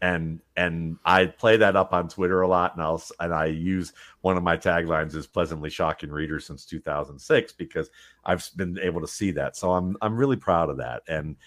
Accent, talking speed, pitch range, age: American, 210 wpm, 80-95 Hz, 50-69